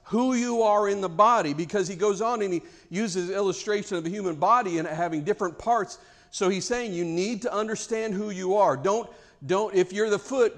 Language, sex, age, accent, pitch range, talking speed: English, male, 50-69, American, 165-215 Hz, 215 wpm